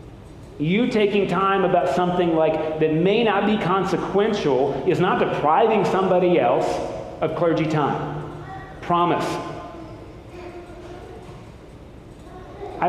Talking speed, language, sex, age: 100 wpm, English, male, 40-59